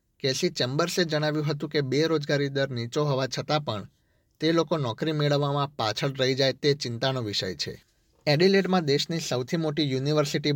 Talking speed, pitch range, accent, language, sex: 170 wpm, 120-145 Hz, native, Gujarati, male